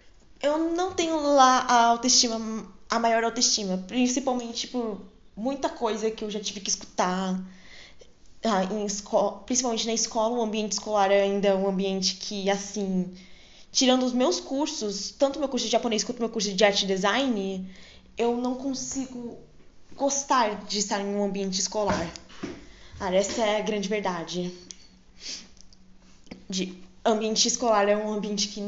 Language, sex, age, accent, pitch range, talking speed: Portuguese, female, 10-29, Brazilian, 200-250 Hz, 155 wpm